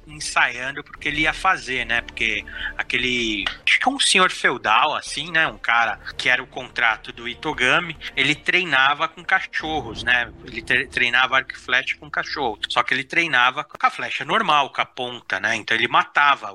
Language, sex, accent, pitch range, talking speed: Portuguese, male, Brazilian, 120-155 Hz, 180 wpm